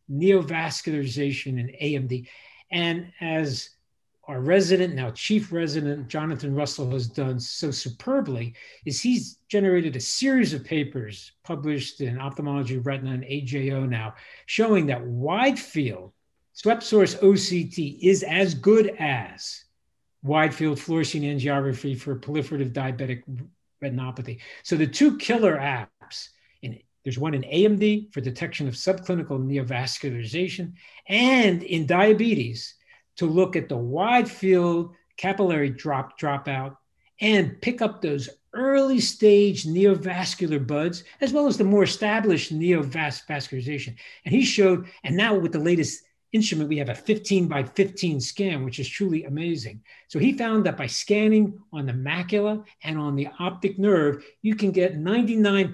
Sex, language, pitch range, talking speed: male, English, 140-195 Hz, 140 wpm